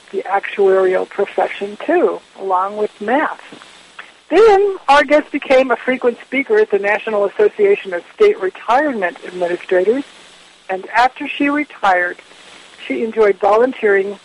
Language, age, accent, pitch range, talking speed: English, 60-79, American, 195-270 Hz, 120 wpm